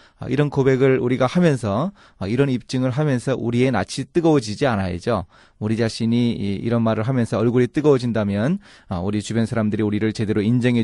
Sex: male